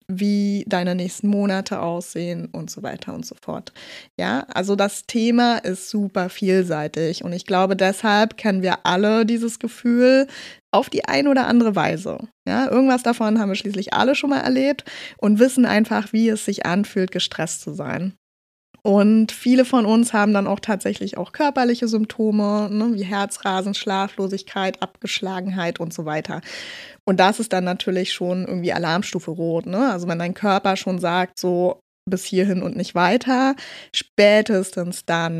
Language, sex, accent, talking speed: German, female, German, 165 wpm